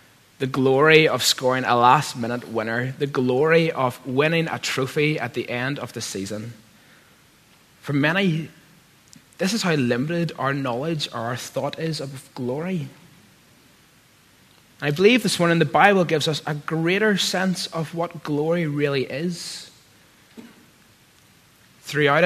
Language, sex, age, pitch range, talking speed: English, male, 20-39, 135-170 Hz, 135 wpm